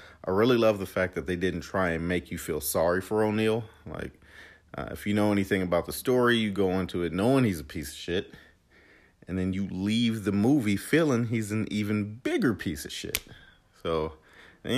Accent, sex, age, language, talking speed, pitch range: American, male, 40-59, English, 205 wpm, 90-110 Hz